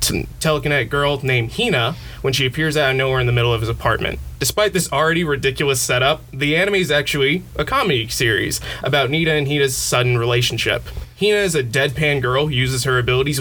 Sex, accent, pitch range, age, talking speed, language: male, American, 125-160 Hz, 20-39, 195 wpm, English